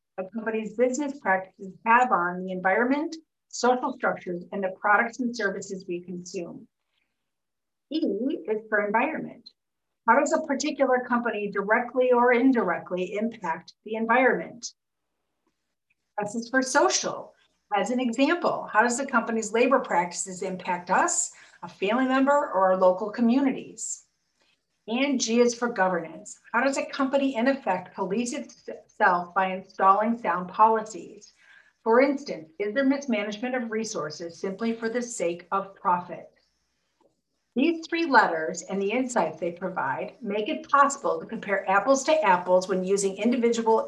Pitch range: 190-255 Hz